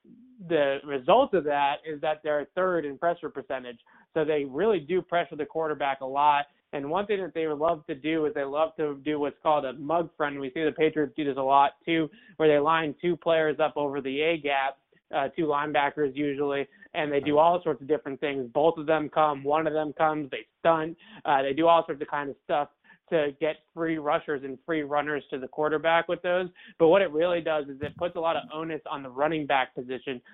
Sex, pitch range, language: male, 145-165 Hz, English